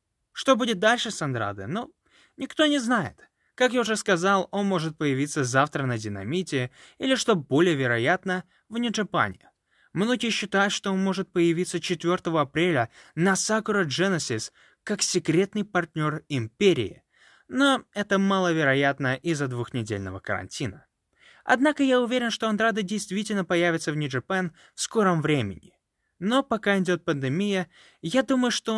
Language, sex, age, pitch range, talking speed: English, male, 20-39, 145-220 Hz, 135 wpm